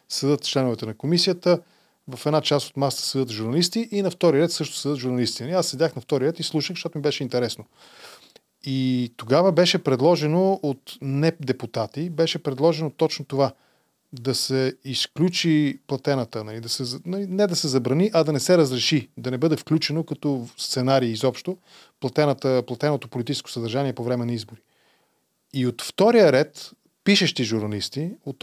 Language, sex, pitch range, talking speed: Bulgarian, male, 125-165 Hz, 155 wpm